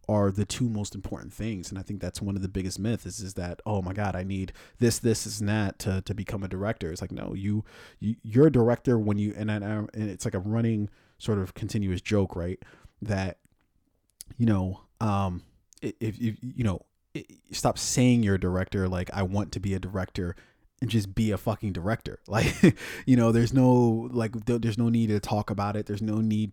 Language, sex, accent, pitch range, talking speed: English, male, American, 95-110 Hz, 220 wpm